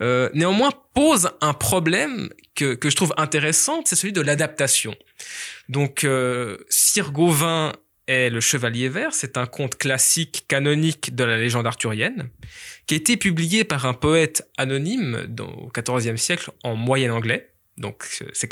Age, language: 20-39, French